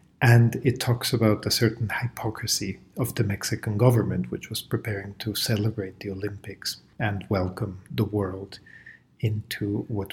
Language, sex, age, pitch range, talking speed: English, male, 50-69, 105-130 Hz, 140 wpm